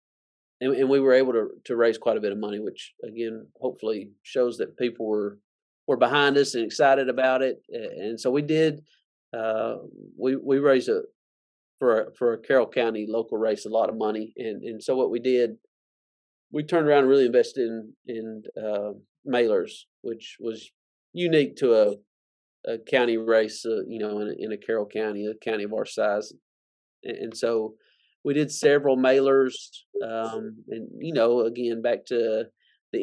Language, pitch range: English, 115-135 Hz